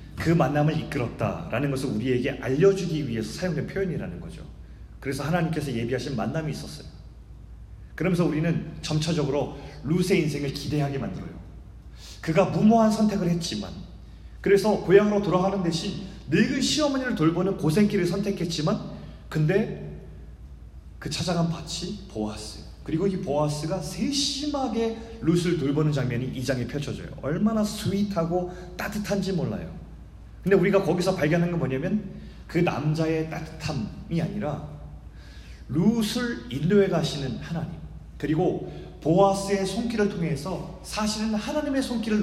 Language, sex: Korean, male